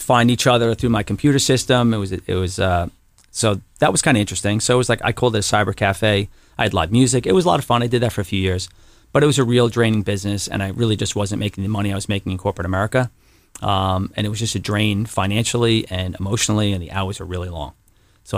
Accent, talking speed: American, 270 wpm